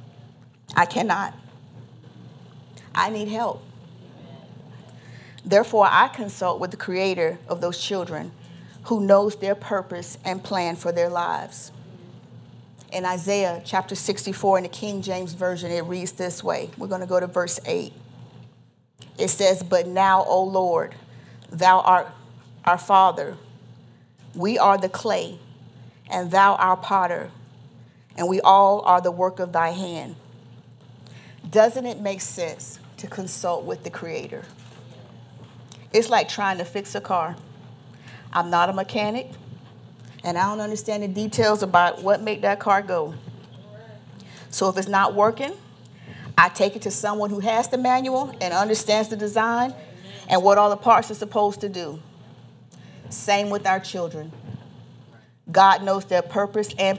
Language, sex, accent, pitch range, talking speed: English, female, American, 170-205 Hz, 145 wpm